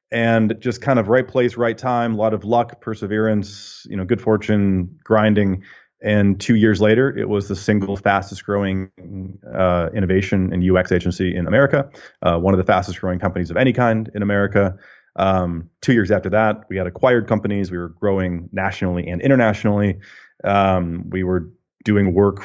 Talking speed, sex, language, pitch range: 180 wpm, male, English, 90-110 Hz